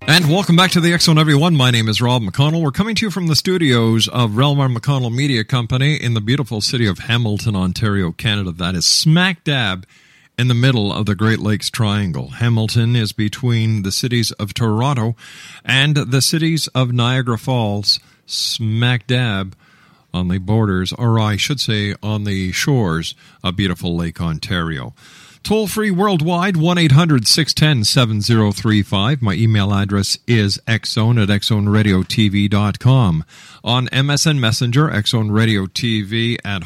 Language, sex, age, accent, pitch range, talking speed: English, male, 50-69, American, 105-140 Hz, 145 wpm